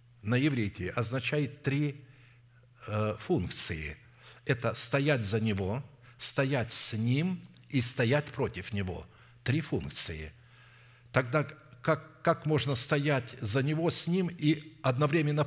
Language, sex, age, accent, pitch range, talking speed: Russian, male, 60-79, native, 120-150 Hz, 115 wpm